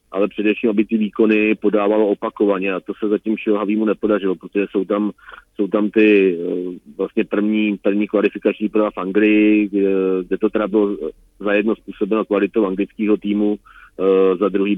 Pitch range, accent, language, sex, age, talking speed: 100-105 Hz, native, Czech, male, 40-59, 155 wpm